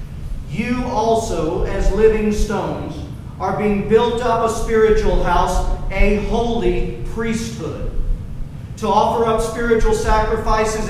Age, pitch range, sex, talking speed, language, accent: 40-59, 175-225 Hz, male, 110 wpm, English, American